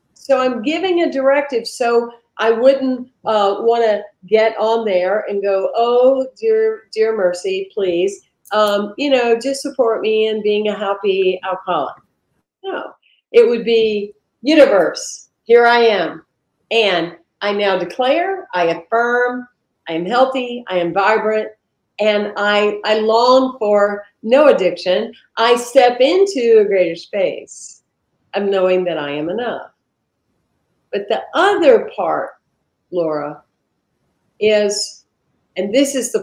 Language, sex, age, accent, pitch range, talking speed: English, female, 50-69, American, 195-255 Hz, 135 wpm